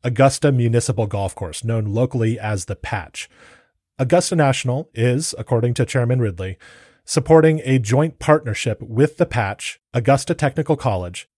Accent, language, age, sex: American, English, 30-49, male